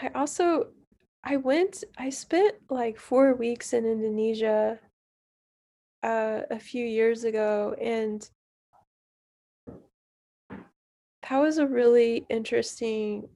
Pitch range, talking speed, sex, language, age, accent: 210-260 Hz, 100 wpm, female, English, 20-39, American